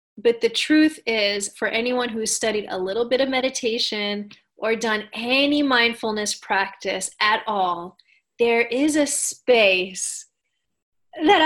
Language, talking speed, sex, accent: English, 130 wpm, female, American